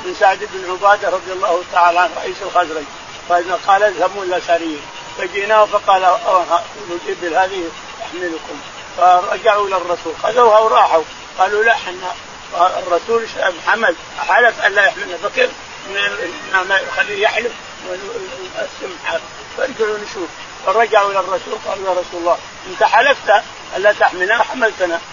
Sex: male